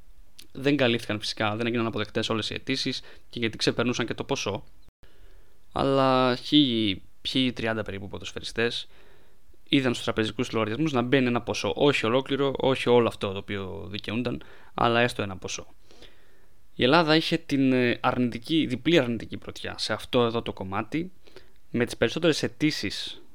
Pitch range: 110-130 Hz